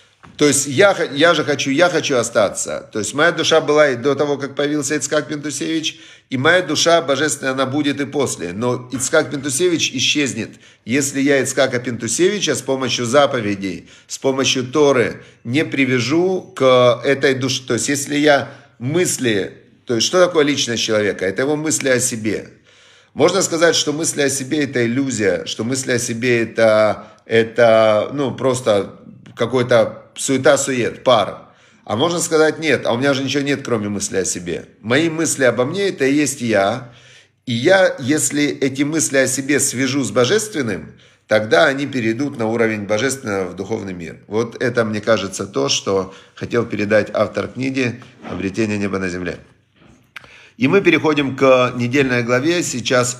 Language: Russian